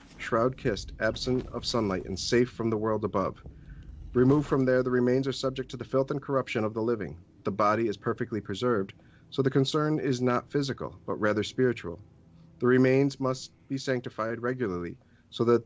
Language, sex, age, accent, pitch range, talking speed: English, male, 40-59, American, 100-125 Hz, 180 wpm